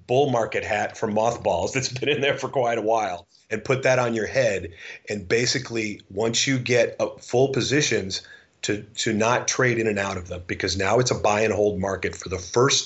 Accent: American